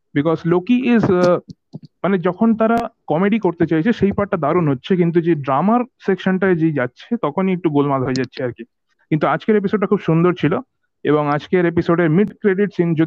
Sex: male